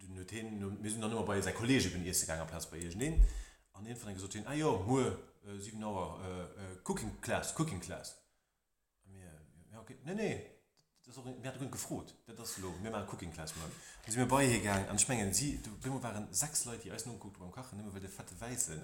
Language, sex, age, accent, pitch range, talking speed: English, male, 30-49, German, 90-120 Hz, 250 wpm